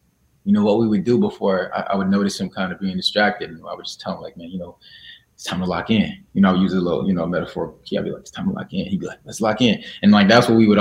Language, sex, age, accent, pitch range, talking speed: English, male, 20-39, American, 95-155 Hz, 335 wpm